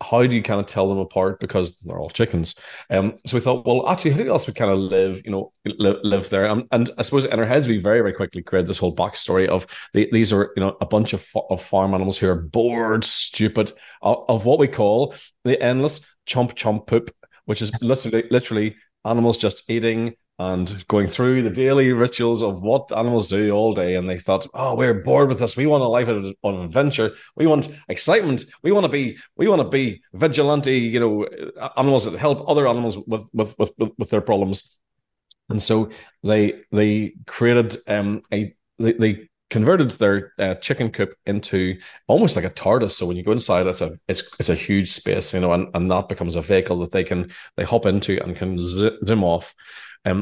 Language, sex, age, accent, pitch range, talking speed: English, male, 30-49, Irish, 95-115 Hz, 215 wpm